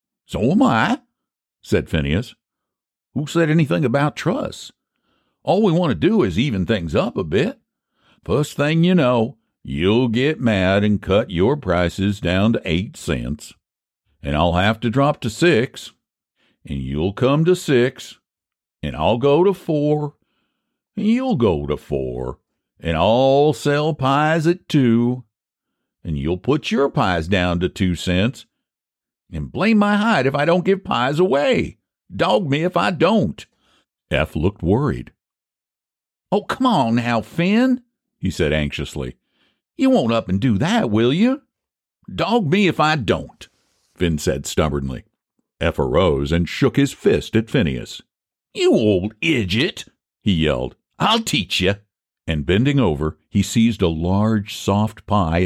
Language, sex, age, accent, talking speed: English, male, 60-79, American, 150 wpm